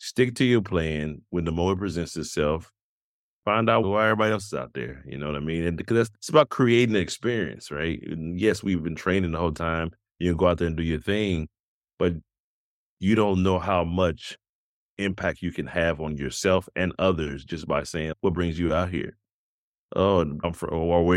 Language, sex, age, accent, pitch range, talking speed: English, male, 30-49, American, 85-105 Hz, 210 wpm